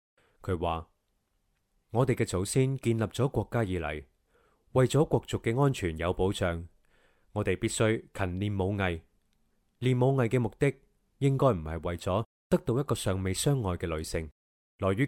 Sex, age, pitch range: male, 20-39, 85-125 Hz